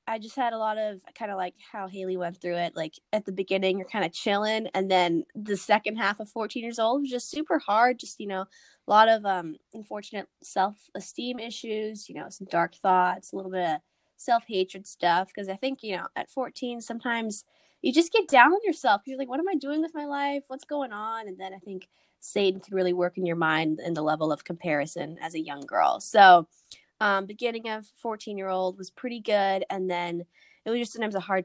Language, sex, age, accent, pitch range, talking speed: English, female, 10-29, American, 170-220 Hz, 225 wpm